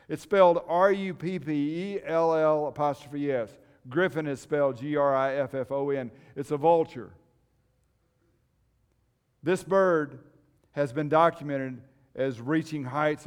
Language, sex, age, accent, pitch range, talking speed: English, male, 50-69, American, 125-175 Hz, 90 wpm